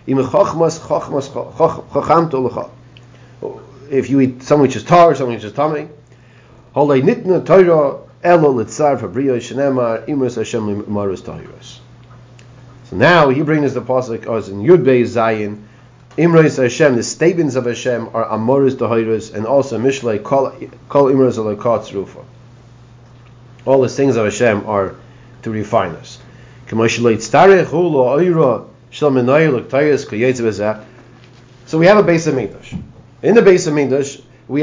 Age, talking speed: 40-59, 95 wpm